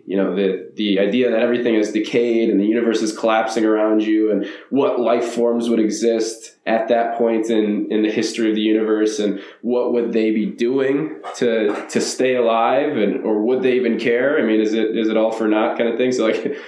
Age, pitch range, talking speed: 20-39, 110-125 Hz, 225 wpm